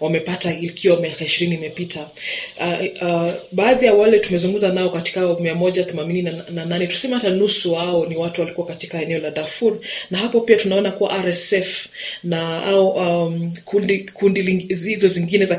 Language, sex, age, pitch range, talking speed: Swahili, female, 20-39, 170-195 Hz, 175 wpm